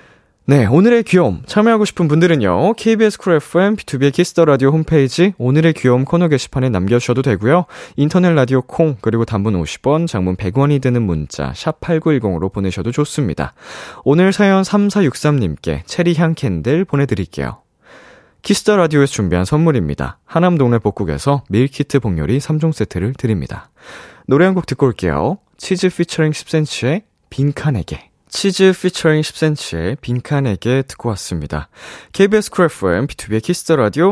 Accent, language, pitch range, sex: native, Korean, 110-165 Hz, male